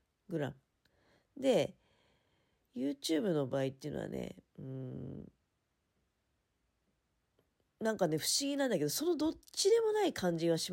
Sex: female